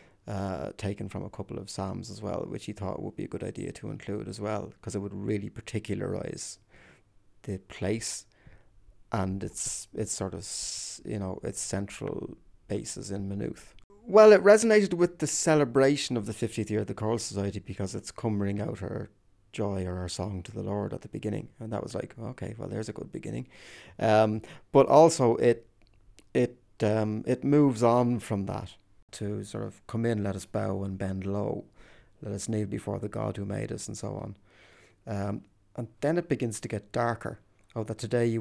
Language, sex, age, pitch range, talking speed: English, male, 30-49, 100-115 Hz, 195 wpm